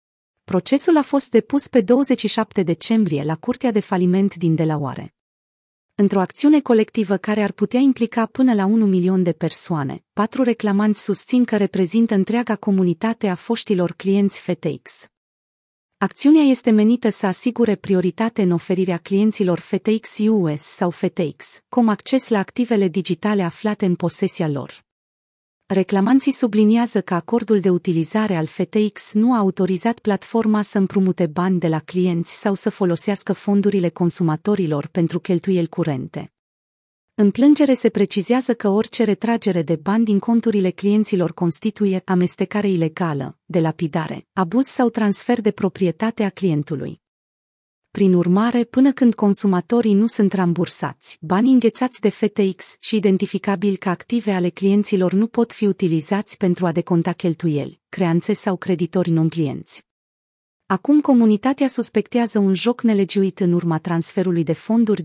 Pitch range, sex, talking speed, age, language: 175-220 Hz, female, 140 wpm, 30-49, Romanian